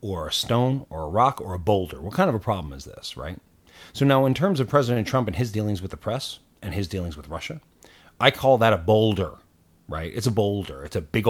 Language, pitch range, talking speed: English, 85-125 Hz, 250 wpm